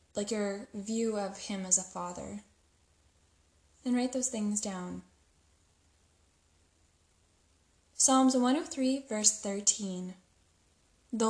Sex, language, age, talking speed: female, English, 10-29, 90 wpm